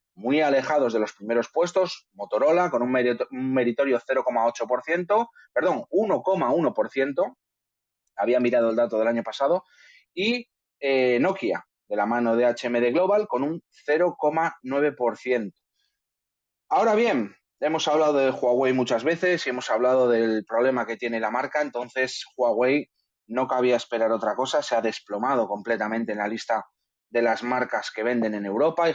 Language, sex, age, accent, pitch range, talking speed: Spanish, male, 30-49, Spanish, 115-155 Hz, 150 wpm